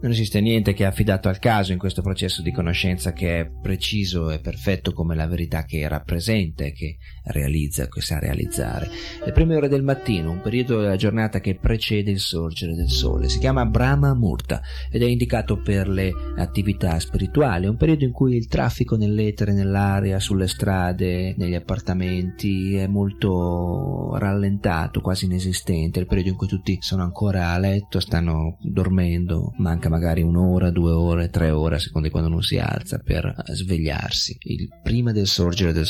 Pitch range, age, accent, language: 85-105 Hz, 30-49, native, Italian